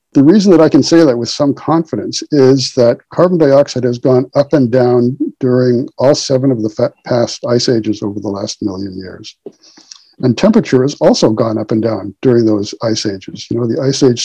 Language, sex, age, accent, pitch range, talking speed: English, male, 60-79, American, 120-155 Hz, 205 wpm